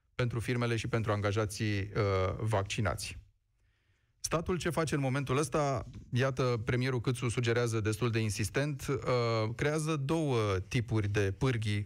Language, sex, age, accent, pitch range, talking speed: Romanian, male, 30-49, native, 110-130 Hz, 130 wpm